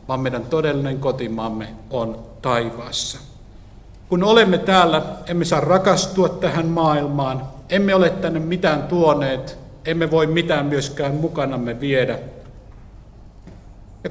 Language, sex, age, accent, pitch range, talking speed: Finnish, male, 50-69, native, 120-170 Hz, 110 wpm